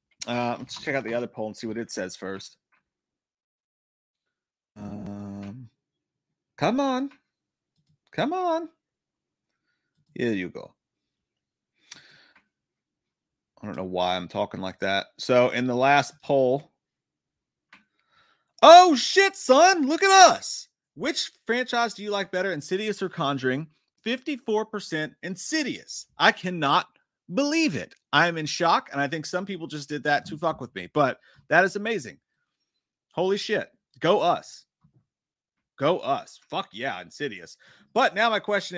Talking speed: 135 wpm